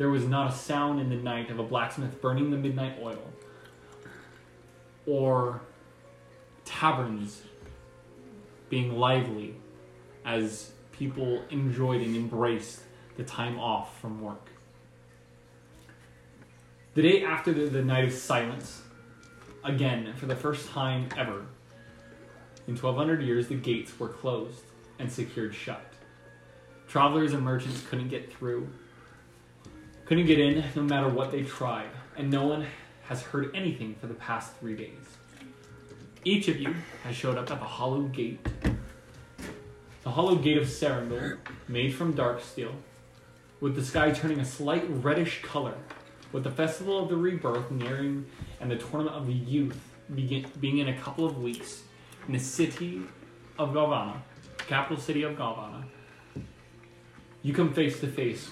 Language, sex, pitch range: English, male, 115-145 Hz